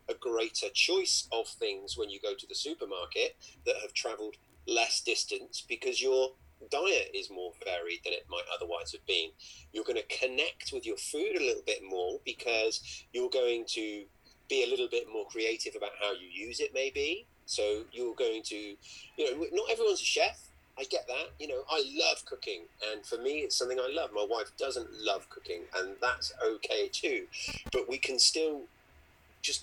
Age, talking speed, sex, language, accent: 30-49, 190 wpm, male, English, British